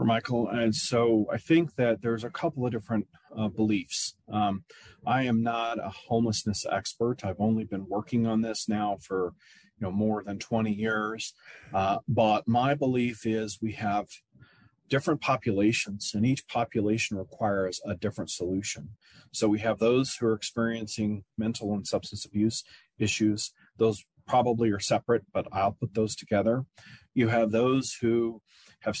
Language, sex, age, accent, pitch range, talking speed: English, male, 40-59, American, 105-120 Hz, 155 wpm